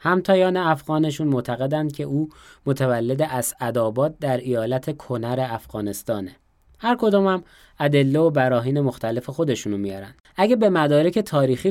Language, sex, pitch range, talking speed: English, male, 120-170 Hz, 125 wpm